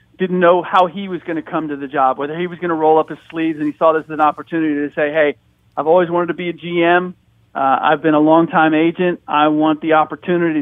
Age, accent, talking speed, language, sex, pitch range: 40-59, American, 265 wpm, English, male, 150-180 Hz